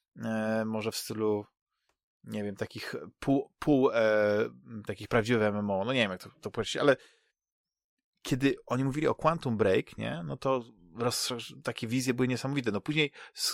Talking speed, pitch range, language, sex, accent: 160 wpm, 110-140 Hz, Polish, male, native